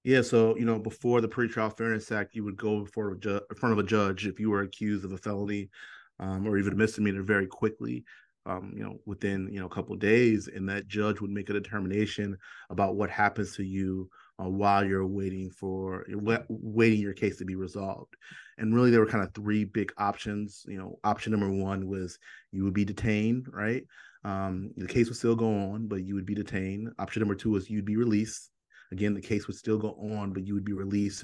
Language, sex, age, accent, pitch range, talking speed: English, male, 30-49, American, 95-110 Hz, 220 wpm